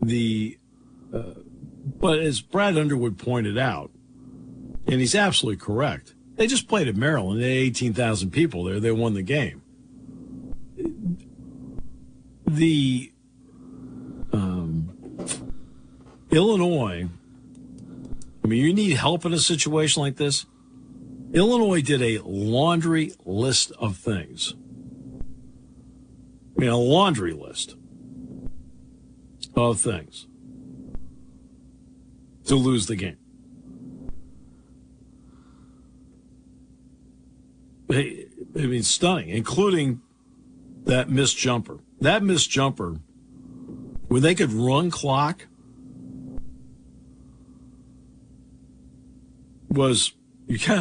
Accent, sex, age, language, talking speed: American, male, 50-69, English, 90 wpm